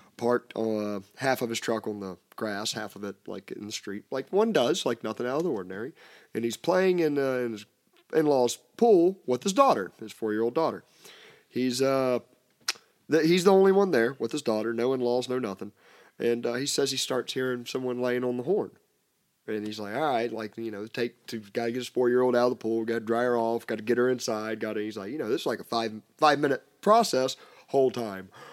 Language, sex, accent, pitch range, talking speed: English, male, American, 110-150 Hz, 225 wpm